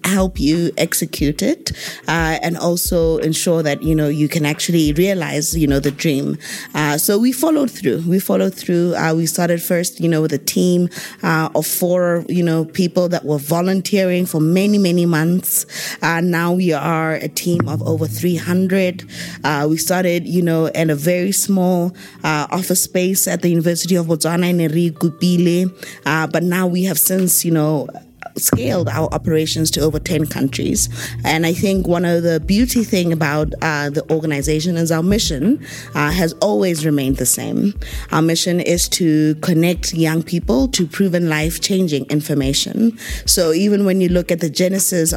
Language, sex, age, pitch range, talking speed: English, female, 20-39, 155-180 Hz, 180 wpm